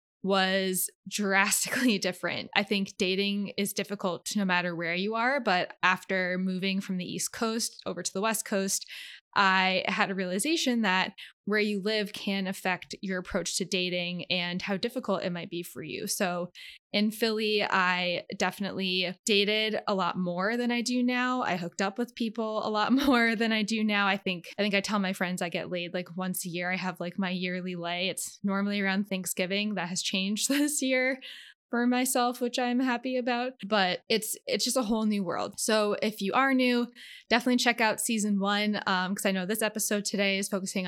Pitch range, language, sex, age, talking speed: 185-215 Hz, English, female, 20-39, 200 wpm